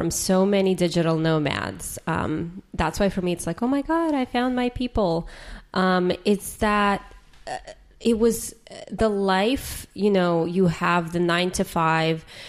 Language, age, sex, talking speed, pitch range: English, 20-39, female, 170 wpm, 170-200 Hz